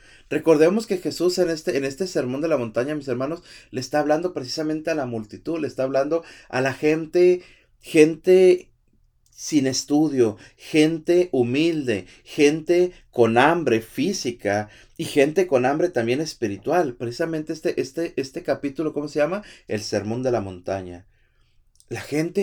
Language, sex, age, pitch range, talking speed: Spanish, male, 30-49, 125-175 Hz, 150 wpm